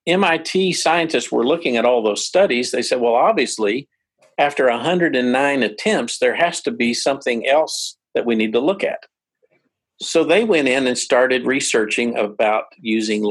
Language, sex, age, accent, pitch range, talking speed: English, male, 50-69, American, 120-165 Hz, 160 wpm